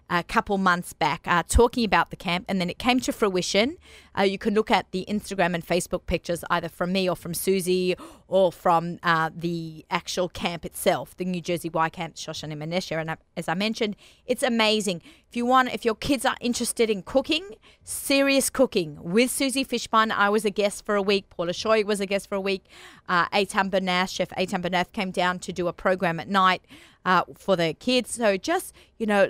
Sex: female